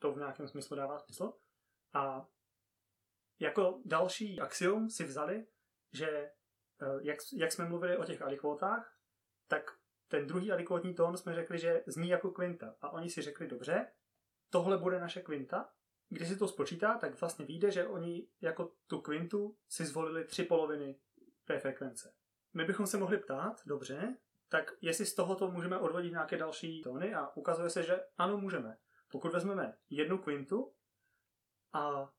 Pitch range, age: 145-185 Hz, 30-49